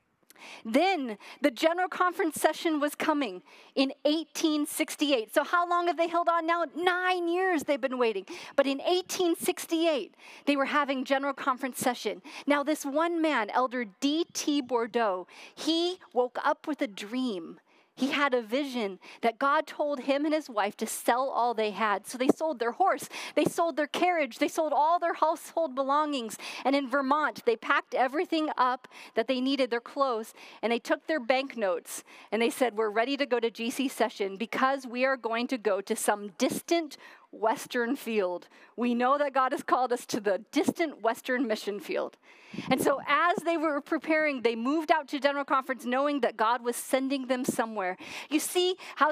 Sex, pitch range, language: female, 245-315 Hz, English